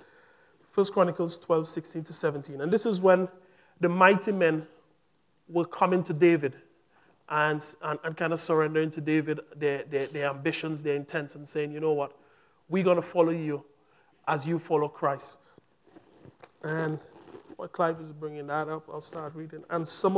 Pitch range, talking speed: 155-195 Hz, 165 wpm